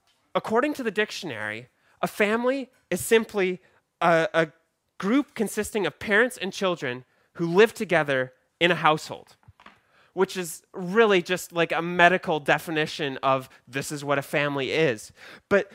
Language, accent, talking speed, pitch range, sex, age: English, American, 145 wpm, 155-200 Hz, male, 20-39